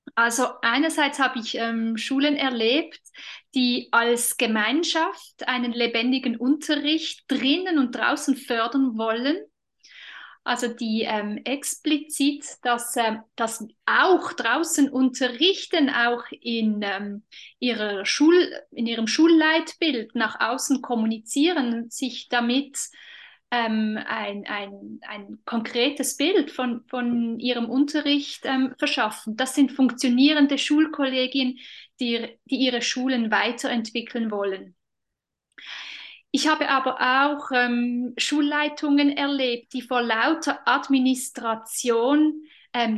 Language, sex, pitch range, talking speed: English, female, 235-290 Hz, 105 wpm